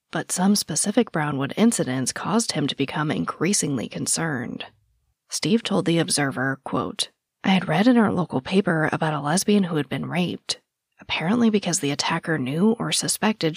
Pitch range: 150-200 Hz